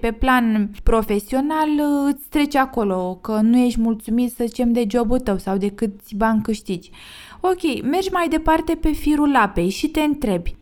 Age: 20-39